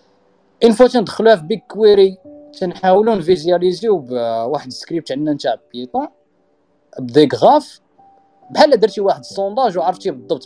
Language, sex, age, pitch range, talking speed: Arabic, male, 20-39, 135-195 Hz, 115 wpm